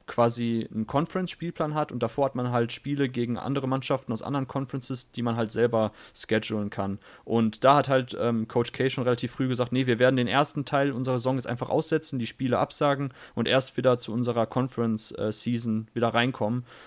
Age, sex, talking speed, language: 30-49, male, 195 wpm, German